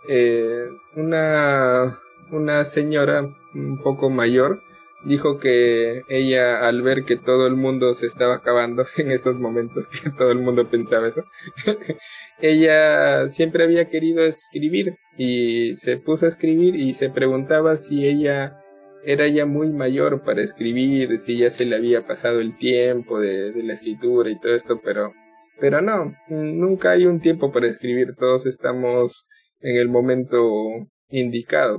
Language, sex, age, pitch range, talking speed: Spanish, male, 20-39, 120-155 Hz, 150 wpm